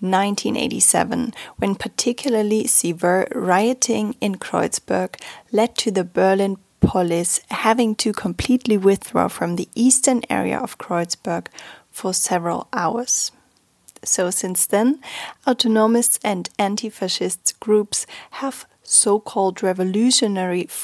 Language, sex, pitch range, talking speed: English, female, 190-235 Hz, 100 wpm